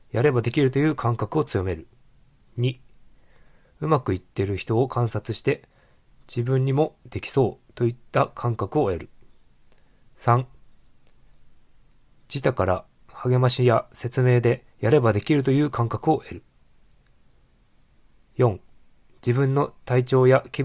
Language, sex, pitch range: Japanese, male, 115-135 Hz